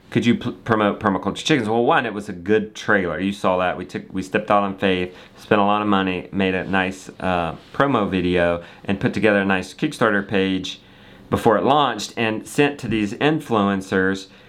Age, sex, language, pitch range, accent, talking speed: 40-59, male, English, 100-130 Hz, American, 205 wpm